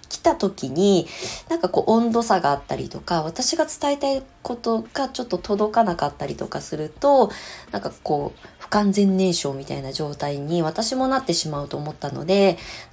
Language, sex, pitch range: Japanese, female, 145-200 Hz